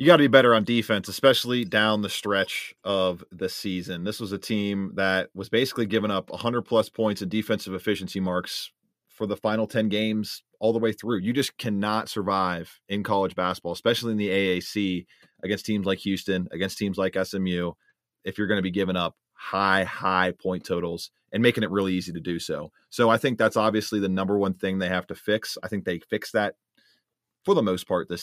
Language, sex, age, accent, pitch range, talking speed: English, male, 30-49, American, 95-115 Hz, 215 wpm